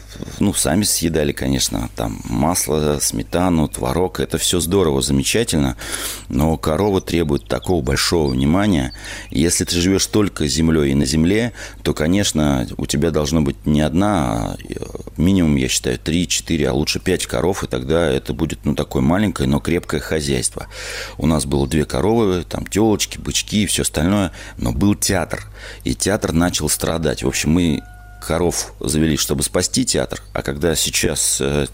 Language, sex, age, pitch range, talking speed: Russian, male, 30-49, 75-95 Hz, 155 wpm